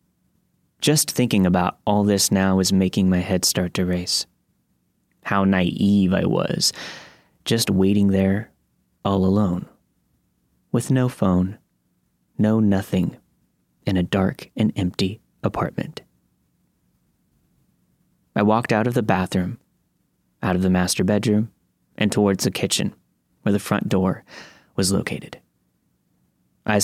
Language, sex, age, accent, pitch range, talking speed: English, male, 20-39, American, 90-105 Hz, 125 wpm